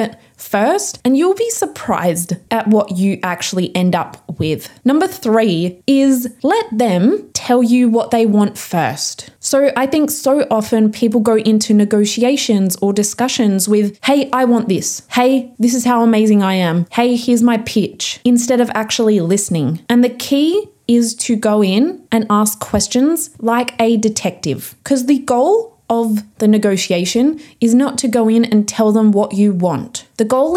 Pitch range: 200-245 Hz